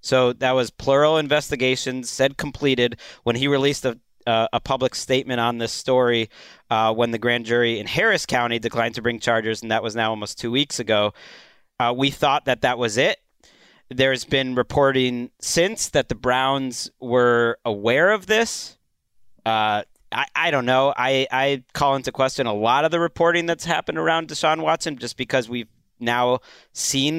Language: English